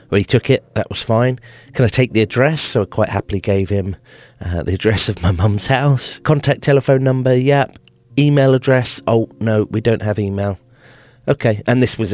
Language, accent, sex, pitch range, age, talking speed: English, British, male, 95-125 Hz, 40-59, 205 wpm